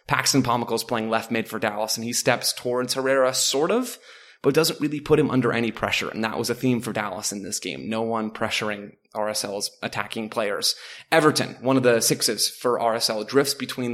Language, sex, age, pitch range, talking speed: English, male, 20-39, 110-130 Hz, 200 wpm